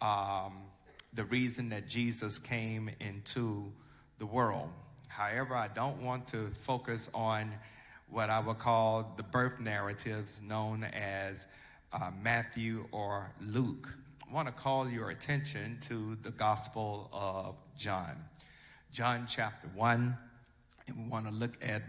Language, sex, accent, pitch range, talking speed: English, male, American, 105-125 Hz, 135 wpm